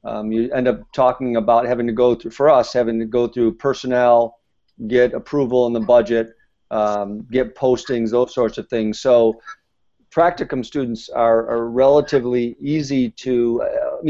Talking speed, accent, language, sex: 160 wpm, American, English, male